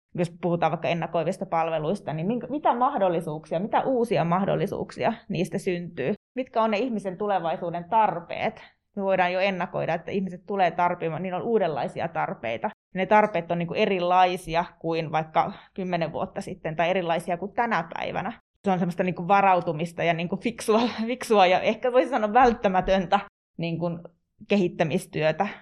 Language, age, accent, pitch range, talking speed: Finnish, 20-39, native, 170-205 Hz, 135 wpm